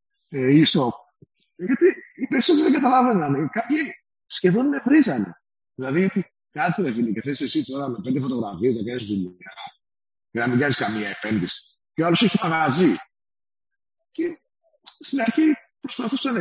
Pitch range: 145-230 Hz